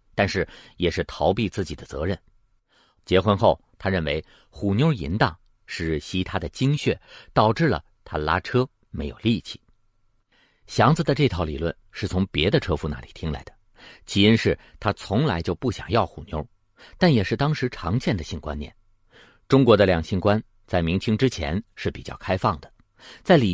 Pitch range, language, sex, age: 85-120 Hz, Chinese, male, 50-69